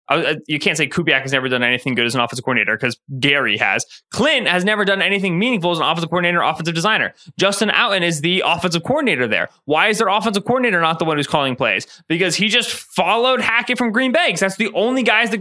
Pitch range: 170-240 Hz